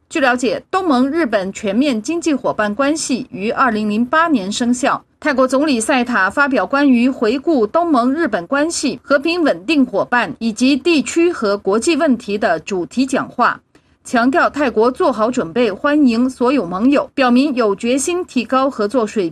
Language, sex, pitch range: Chinese, female, 225-300 Hz